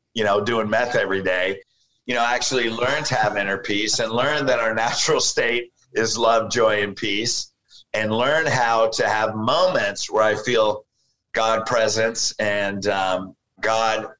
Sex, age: male, 50-69